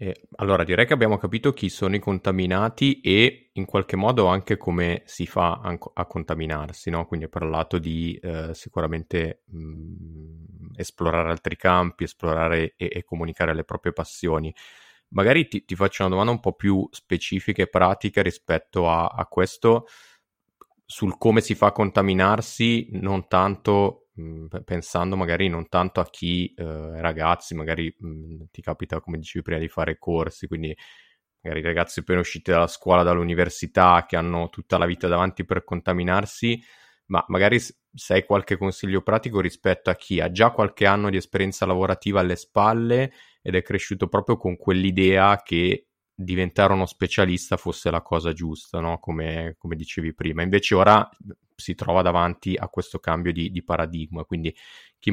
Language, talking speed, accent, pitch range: Italian, 160 wpm, native, 85-95 Hz